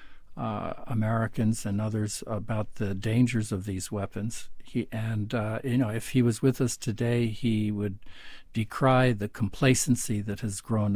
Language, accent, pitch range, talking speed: English, American, 110-140 Hz, 160 wpm